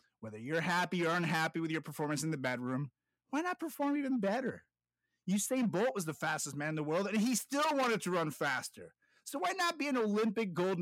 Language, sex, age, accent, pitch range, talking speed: English, male, 30-49, American, 165-230 Hz, 215 wpm